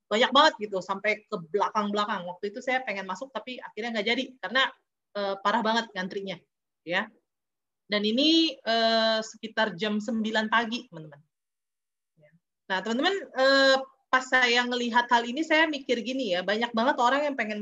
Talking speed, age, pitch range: 160 wpm, 30-49, 175-240 Hz